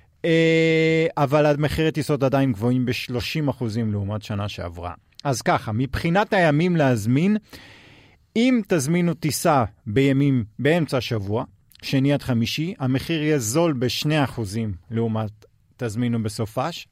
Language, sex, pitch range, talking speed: Hebrew, male, 120-160 Hz, 105 wpm